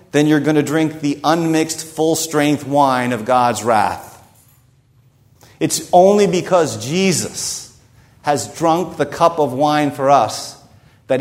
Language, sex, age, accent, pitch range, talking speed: English, male, 50-69, American, 120-150 Hz, 135 wpm